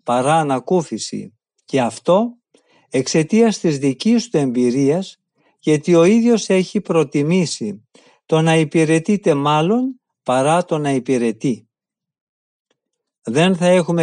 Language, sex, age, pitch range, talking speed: Greek, male, 50-69, 140-190 Hz, 105 wpm